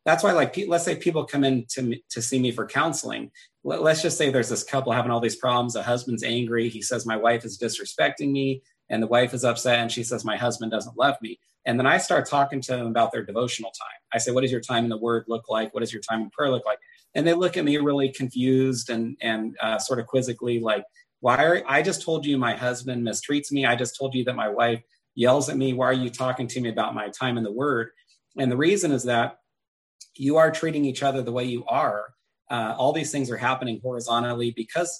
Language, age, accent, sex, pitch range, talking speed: English, 30-49, American, male, 115-135 Hz, 250 wpm